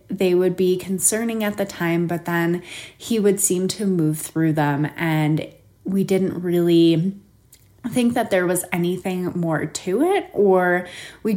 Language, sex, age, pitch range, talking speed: English, female, 20-39, 160-190 Hz, 160 wpm